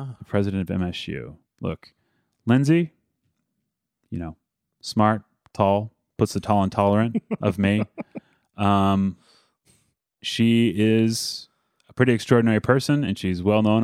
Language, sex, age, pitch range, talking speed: English, male, 30-49, 95-110 Hz, 120 wpm